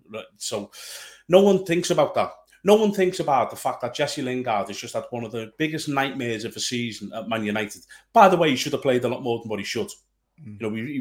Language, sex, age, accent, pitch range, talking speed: English, male, 30-49, British, 120-165 Hz, 255 wpm